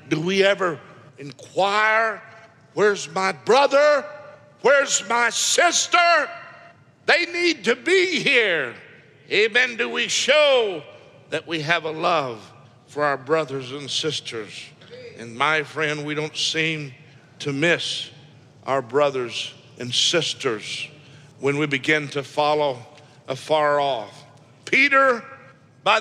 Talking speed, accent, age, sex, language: 115 wpm, American, 60-79, male, English